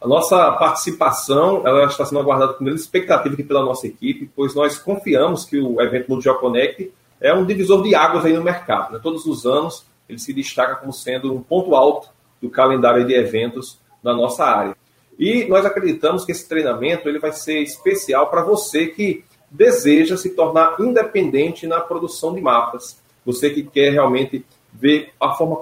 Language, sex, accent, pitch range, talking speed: Portuguese, male, Brazilian, 140-205 Hz, 180 wpm